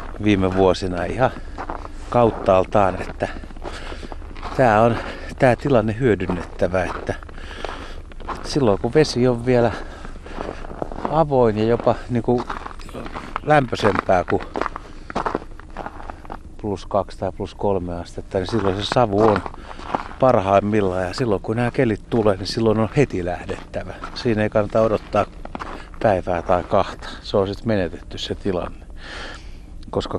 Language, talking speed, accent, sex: Finnish, 115 wpm, native, male